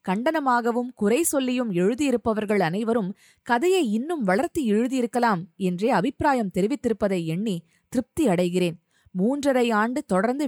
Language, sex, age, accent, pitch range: Tamil, female, 20-39, native, 185-260 Hz